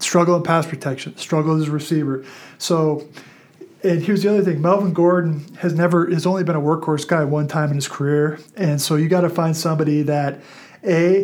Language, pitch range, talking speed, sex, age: English, 150-170 Hz, 200 wpm, male, 30-49